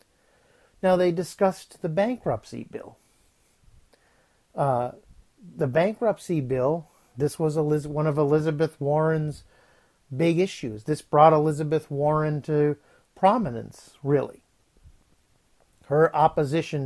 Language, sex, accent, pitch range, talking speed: English, male, American, 140-165 Hz, 95 wpm